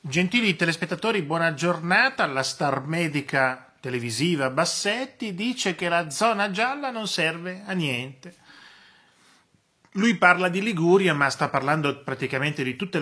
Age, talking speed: 30-49, 130 wpm